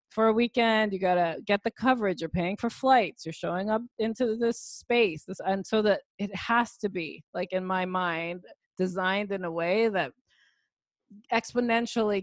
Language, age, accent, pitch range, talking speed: English, 20-39, American, 165-205 Hz, 175 wpm